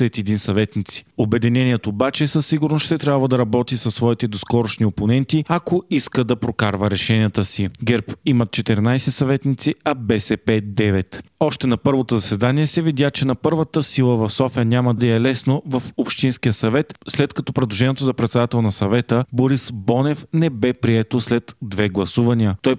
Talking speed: 165 wpm